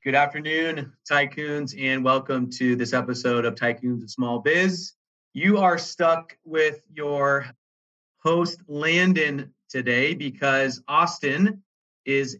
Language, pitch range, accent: English, 130-155 Hz, American